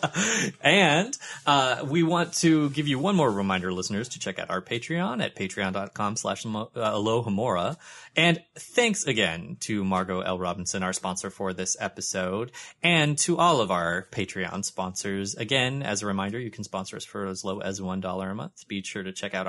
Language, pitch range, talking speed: English, 100-155 Hz, 180 wpm